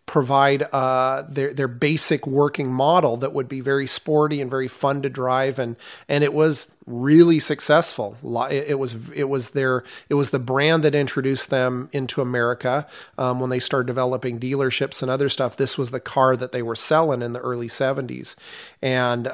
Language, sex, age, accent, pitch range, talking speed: English, male, 30-49, American, 130-155 Hz, 185 wpm